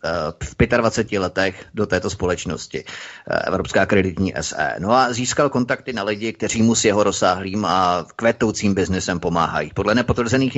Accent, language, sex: native, Czech, male